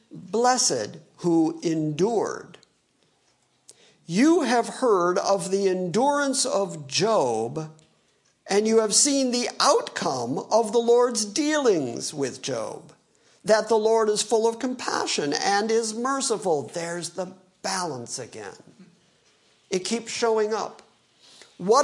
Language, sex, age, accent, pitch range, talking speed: English, male, 50-69, American, 185-230 Hz, 115 wpm